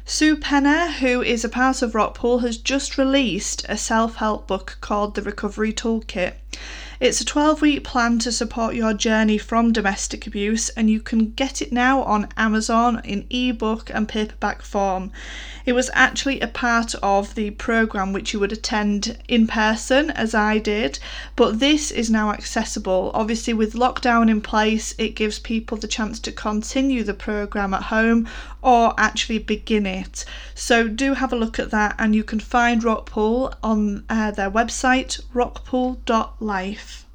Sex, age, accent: female, 30-49, British